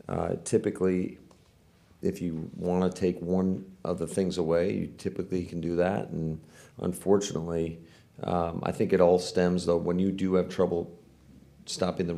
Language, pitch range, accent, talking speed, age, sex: English, 85-90 Hz, American, 165 wpm, 40-59, male